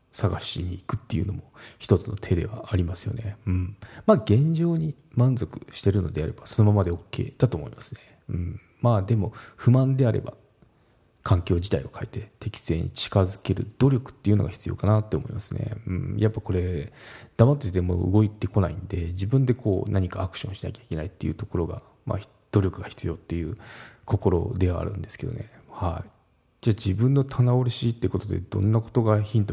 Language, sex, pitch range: Japanese, male, 95-120 Hz